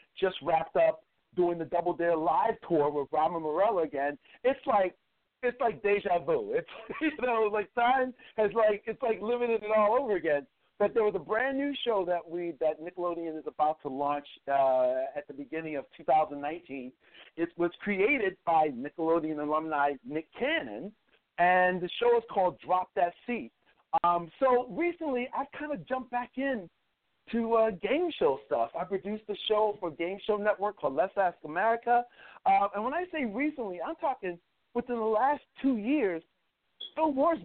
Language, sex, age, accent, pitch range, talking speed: English, male, 50-69, American, 155-235 Hz, 175 wpm